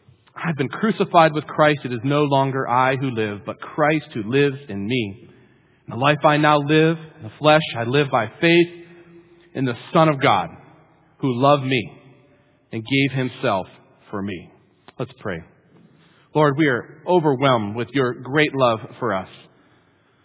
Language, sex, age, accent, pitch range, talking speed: English, male, 40-59, American, 115-150 Hz, 165 wpm